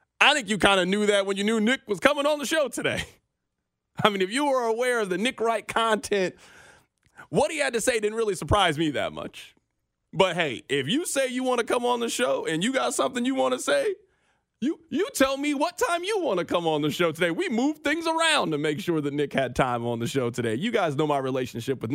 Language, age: English, 30-49